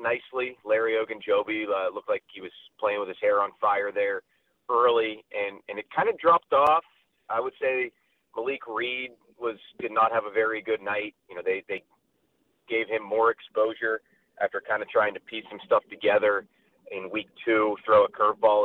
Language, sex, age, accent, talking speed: English, male, 30-49, American, 190 wpm